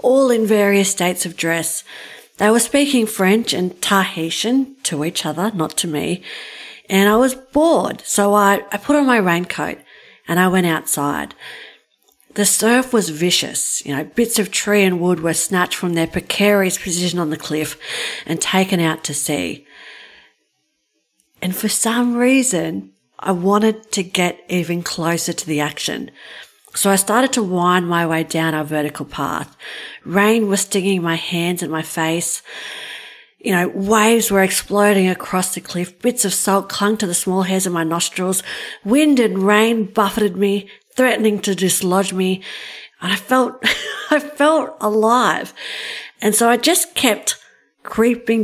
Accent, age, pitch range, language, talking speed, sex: Australian, 40-59, 170-220 Hz, English, 160 wpm, female